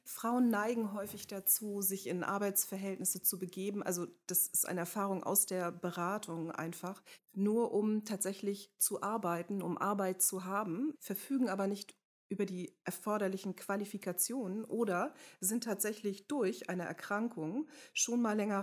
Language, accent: German, German